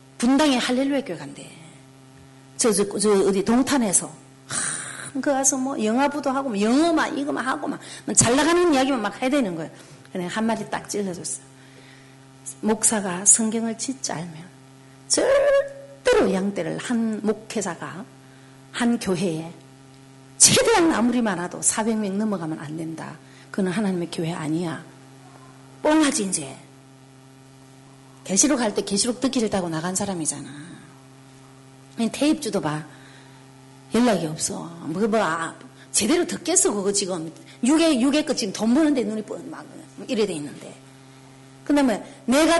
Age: 40-59